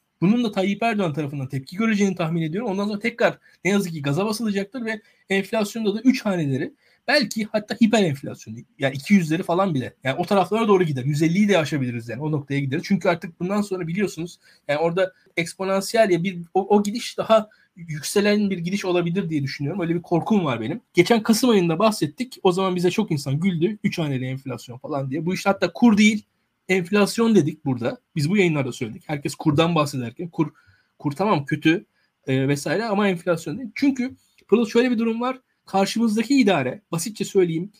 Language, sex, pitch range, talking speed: Turkish, male, 160-215 Hz, 185 wpm